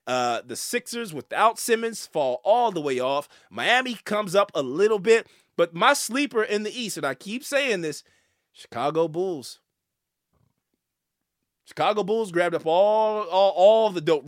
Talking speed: 160 wpm